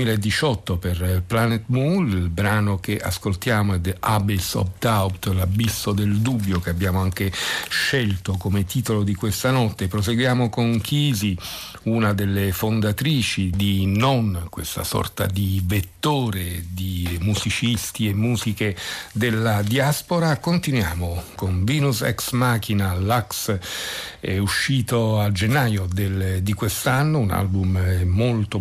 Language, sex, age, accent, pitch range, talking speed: Italian, male, 50-69, native, 100-120 Hz, 125 wpm